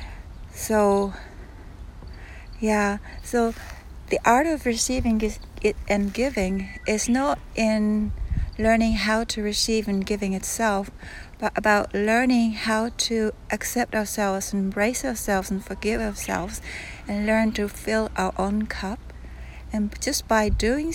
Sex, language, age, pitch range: female, Japanese, 60-79, 195-220 Hz